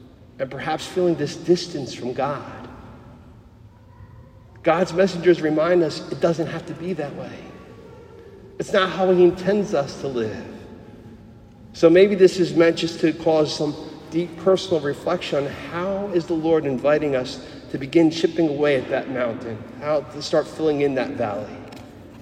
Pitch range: 125-165 Hz